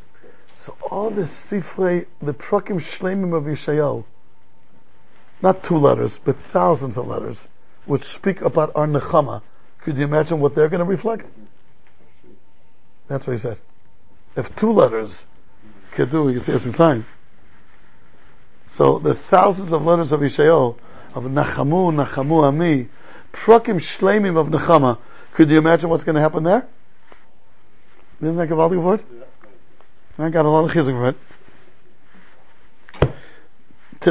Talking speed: 145 wpm